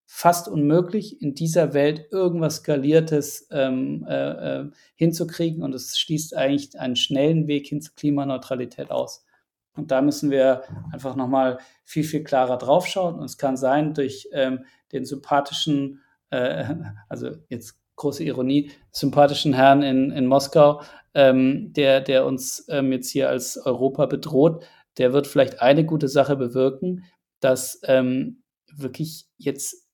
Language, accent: German, German